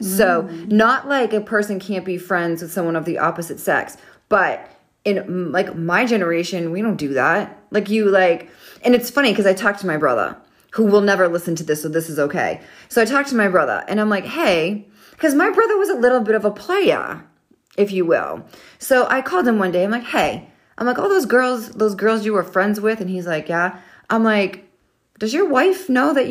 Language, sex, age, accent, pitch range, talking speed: English, female, 30-49, American, 175-225 Hz, 230 wpm